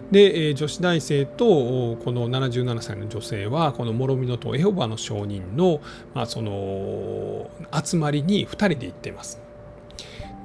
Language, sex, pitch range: Japanese, male, 120-165 Hz